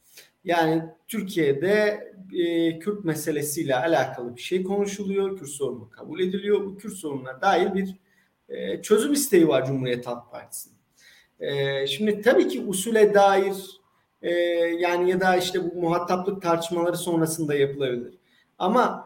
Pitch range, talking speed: 150-200 Hz, 135 wpm